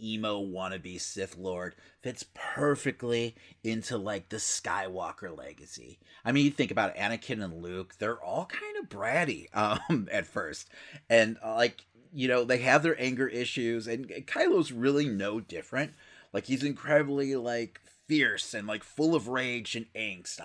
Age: 30-49